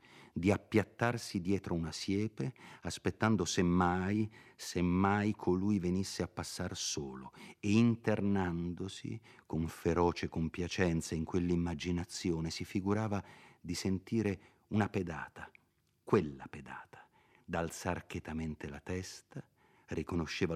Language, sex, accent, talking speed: Italian, male, native, 95 wpm